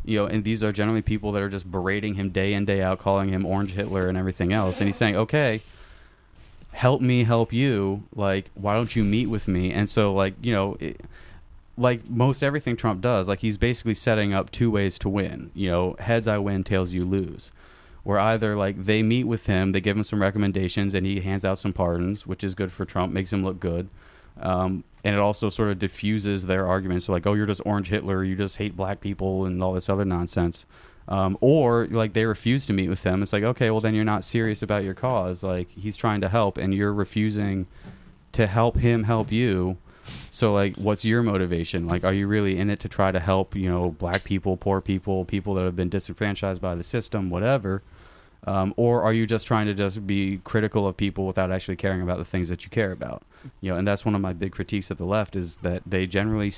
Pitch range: 95-110 Hz